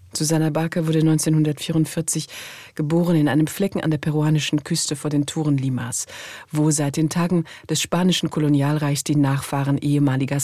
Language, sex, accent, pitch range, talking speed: German, female, German, 140-160 Hz, 150 wpm